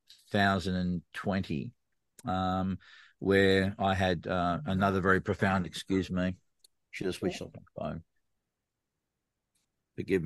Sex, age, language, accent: male, 50-69, English, Australian